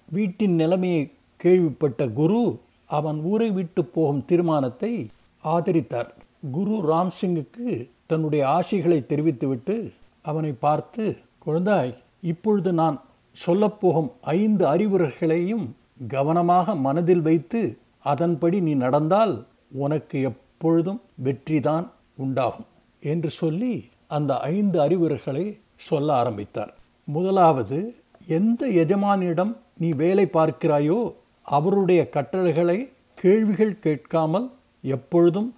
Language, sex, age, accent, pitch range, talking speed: Tamil, male, 60-79, native, 145-190 Hz, 90 wpm